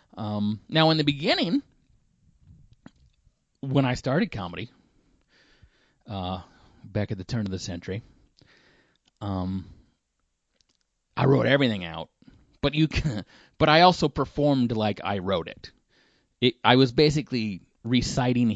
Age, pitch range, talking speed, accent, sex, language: 30-49, 95-130 Hz, 125 wpm, American, male, English